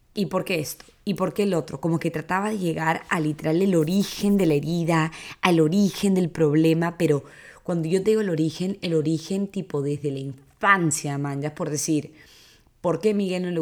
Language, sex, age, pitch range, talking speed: English, female, 20-39, 150-180 Hz, 210 wpm